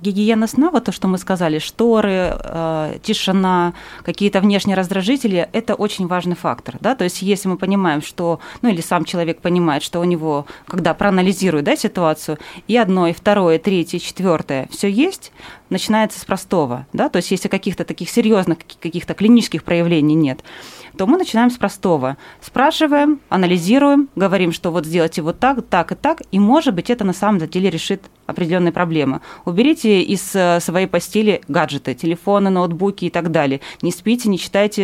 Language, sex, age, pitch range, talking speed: Russian, female, 20-39, 170-205 Hz, 170 wpm